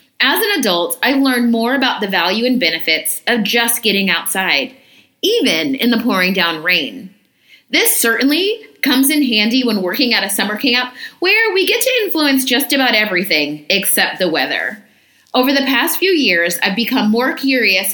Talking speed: 175 wpm